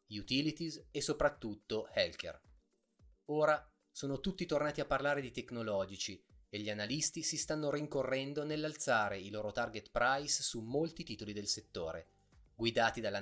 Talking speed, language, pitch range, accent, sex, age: 135 wpm, Italian, 100-140 Hz, native, male, 30-49